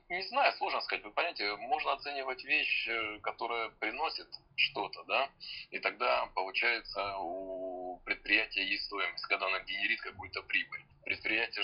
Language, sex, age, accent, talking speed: Russian, male, 20-39, native, 135 wpm